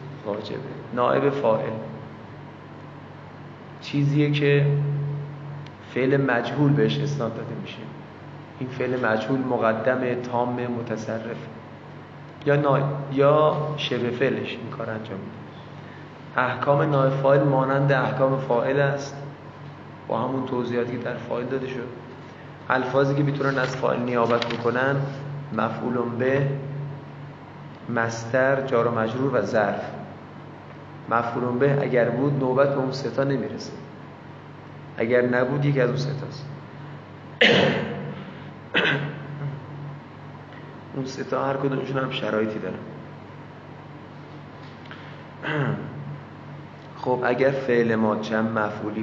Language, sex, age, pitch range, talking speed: Persian, male, 30-49, 120-140 Hz, 100 wpm